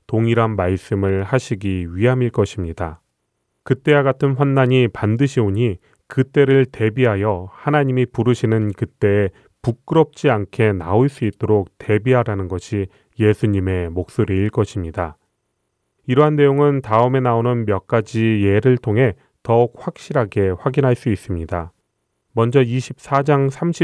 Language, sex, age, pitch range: Korean, male, 30-49, 100-130 Hz